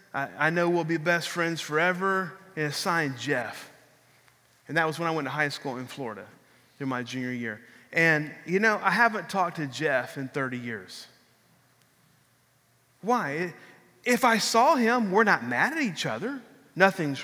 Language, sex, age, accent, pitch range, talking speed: English, male, 30-49, American, 140-170 Hz, 170 wpm